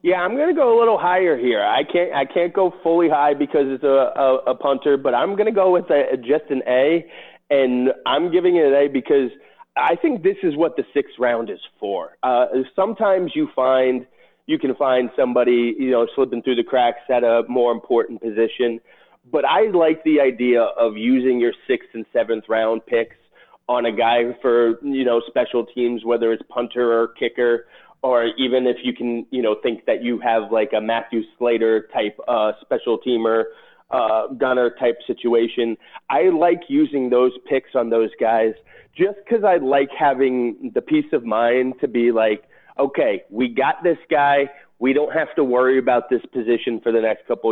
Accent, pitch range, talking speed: American, 115-155 Hz, 190 wpm